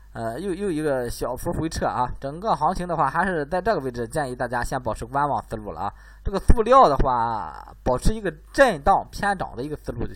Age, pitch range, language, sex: 20-39, 110-155 Hz, Chinese, male